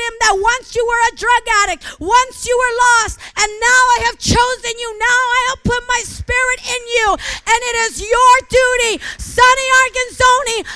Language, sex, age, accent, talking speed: English, female, 40-59, American, 185 wpm